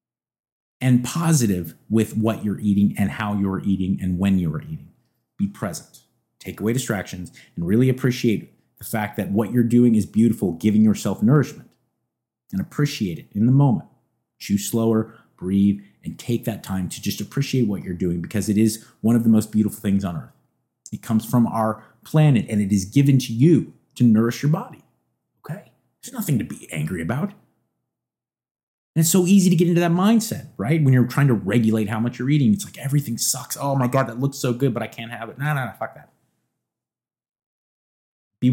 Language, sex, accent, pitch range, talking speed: English, male, American, 110-140 Hz, 195 wpm